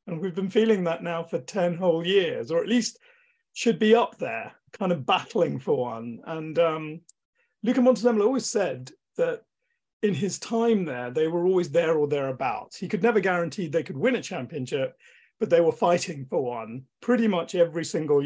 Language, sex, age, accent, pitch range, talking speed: English, male, 40-59, British, 150-220 Hz, 190 wpm